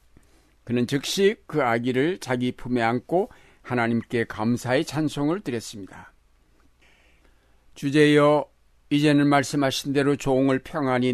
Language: Korean